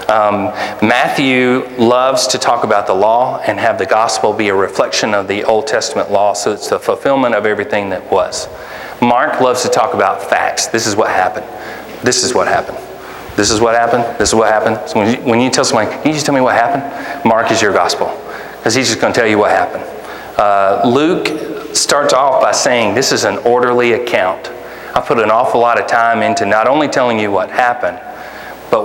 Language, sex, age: English, male, 40-59